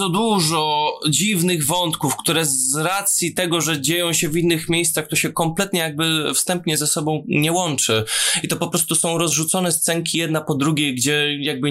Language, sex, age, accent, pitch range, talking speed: Polish, male, 20-39, native, 125-170 Hz, 175 wpm